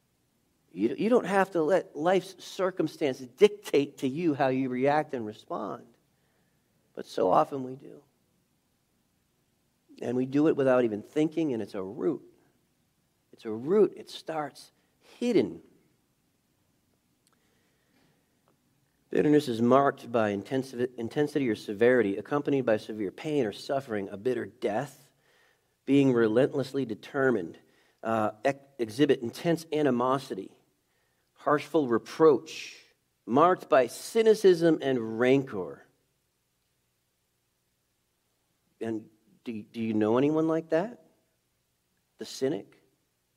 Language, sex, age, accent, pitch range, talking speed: English, male, 40-59, American, 110-155 Hz, 105 wpm